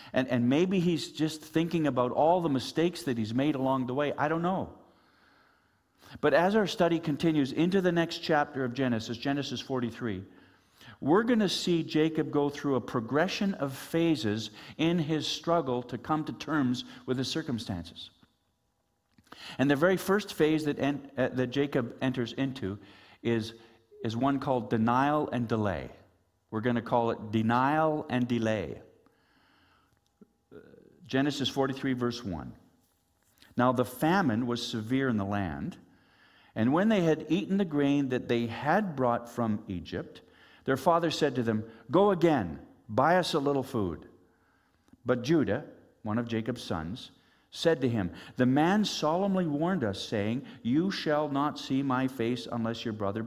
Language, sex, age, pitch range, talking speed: English, male, 50-69, 115-155 Hz, 160 wpm